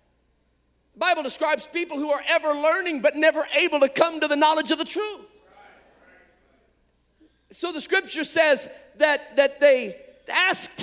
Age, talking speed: 40-59, 150 wpm